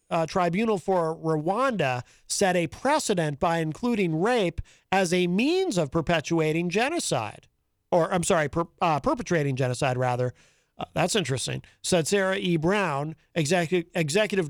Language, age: English, 50-69